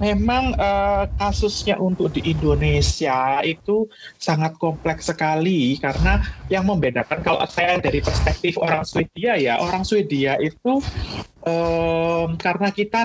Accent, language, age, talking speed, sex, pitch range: native, Indonesian, 30-49, 120 wpm, male, 150-195 Hz